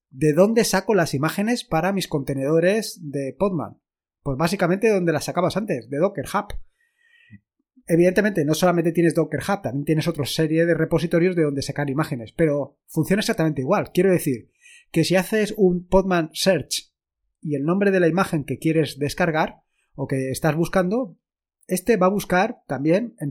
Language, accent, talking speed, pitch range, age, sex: Spanish, Spanish, 170 wpm, 145-190 Hz, 20-39, male